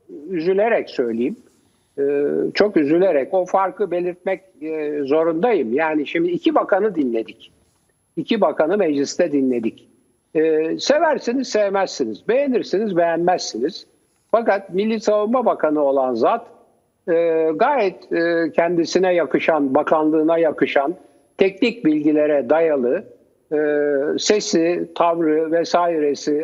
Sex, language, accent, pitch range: male, Turkish, native, 145-210 Hz